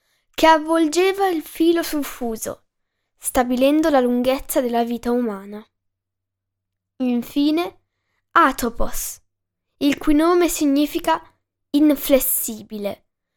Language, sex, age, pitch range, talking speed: Italian, female, 10-29, 210-295 Hz, 85 wpm